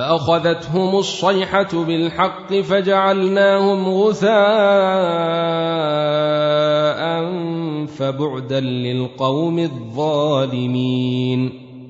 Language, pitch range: Arabic, 145-195 Hz